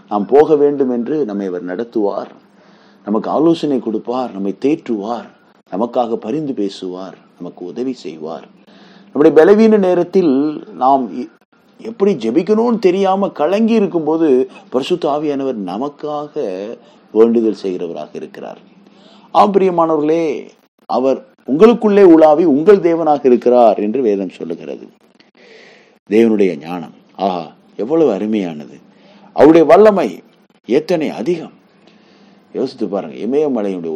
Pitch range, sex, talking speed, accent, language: 110-180 Hz, male, 95 wpm, native, Tamil